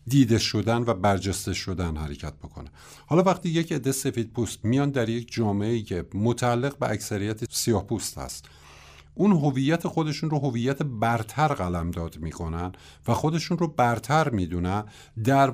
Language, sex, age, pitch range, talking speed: Persian, male, 50-69, 100-145 Hz, 150 wpm